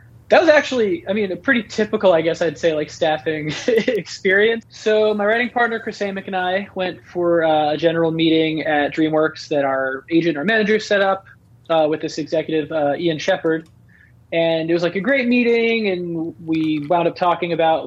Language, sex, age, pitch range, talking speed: English, male, 20-39, 145-190 Hz, 200 wpm